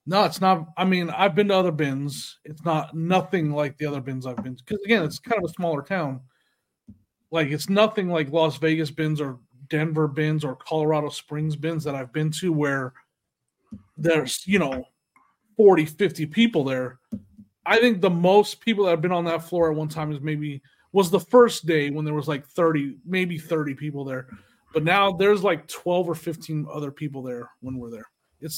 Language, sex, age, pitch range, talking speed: English, male, 30-49, 150-205 Hz, 205 wpm